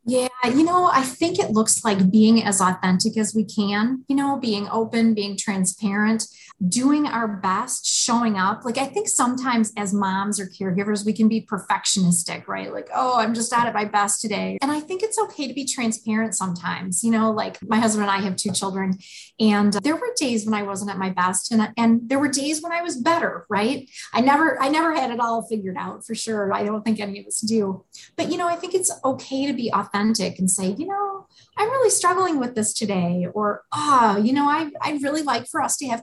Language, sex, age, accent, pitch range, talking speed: English, female, 30-49, American, 195-255 Hz, 225 wpm